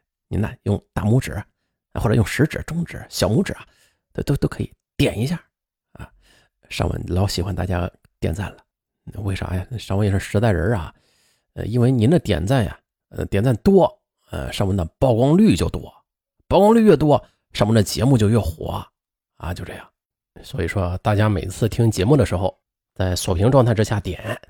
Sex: male